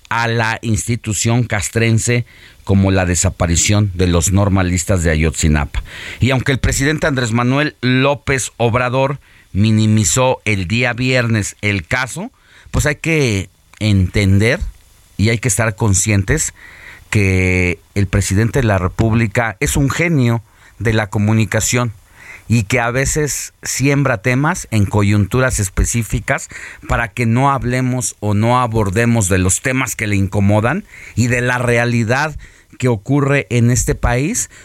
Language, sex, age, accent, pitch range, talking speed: Spanish, male, 40-59, Mexican, 95-125 Hz, 135 wpm